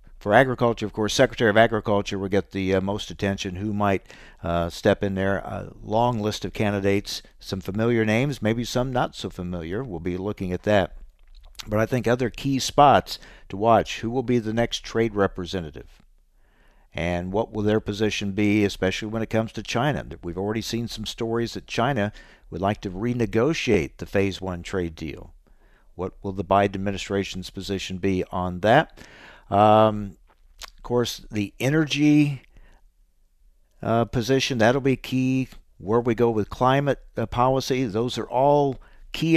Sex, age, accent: male, 60-79, American